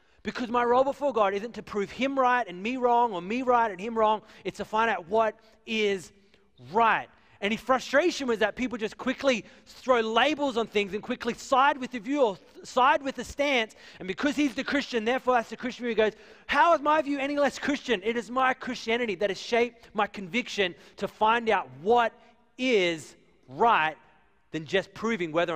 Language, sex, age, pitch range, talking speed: English, male, 30-49, 170-245 Hz, 200 wpm